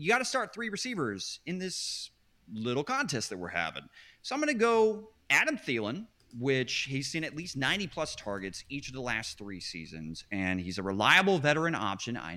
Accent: American